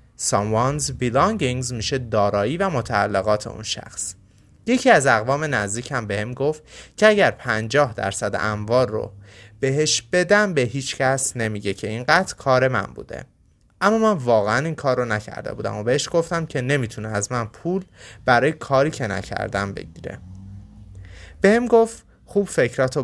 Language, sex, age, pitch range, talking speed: Persian, male, 30-49, 105-155 Hz, 145 wpm